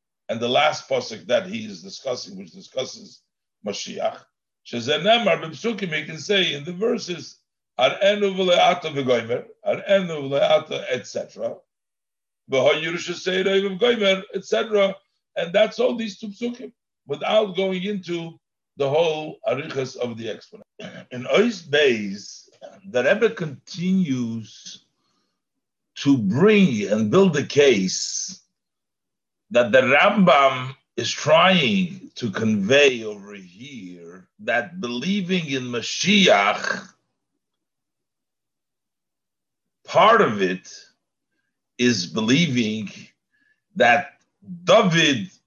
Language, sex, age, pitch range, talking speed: English, male, 60-79, 140-205 Hz, 85 wpm